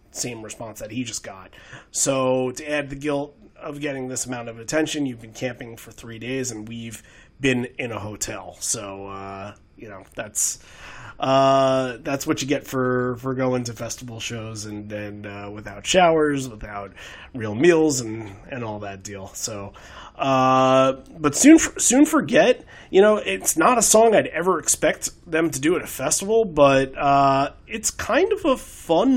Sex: male